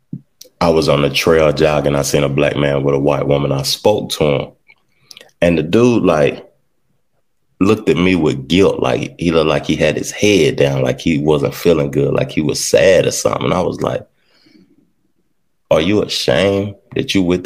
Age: 20-39